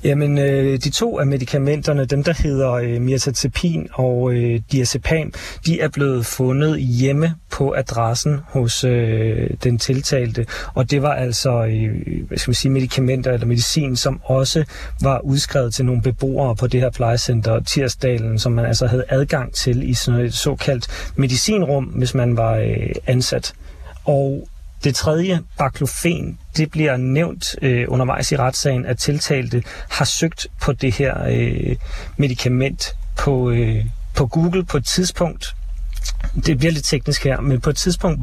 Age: 40-59